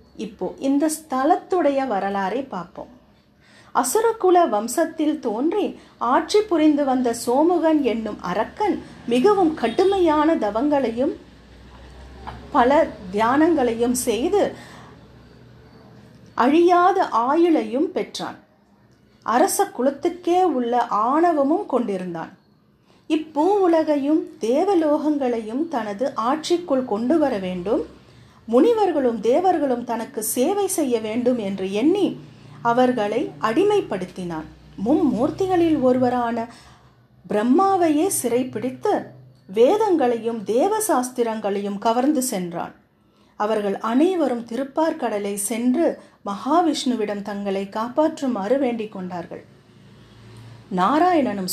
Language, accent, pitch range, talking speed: Tamil, native, 220-320 Hz, 75 wpm